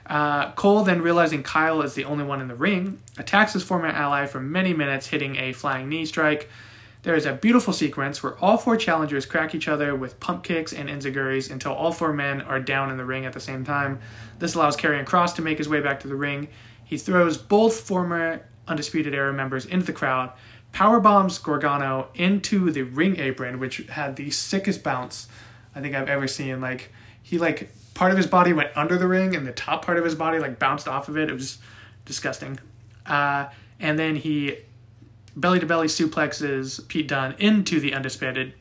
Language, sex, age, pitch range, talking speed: English, male, 20-39, 130-165 Hz, 200 wpm